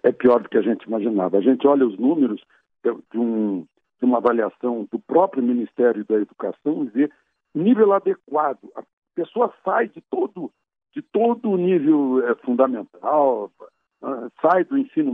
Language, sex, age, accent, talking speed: Portuguese, male, 60-79, Brazilian, 160 wpm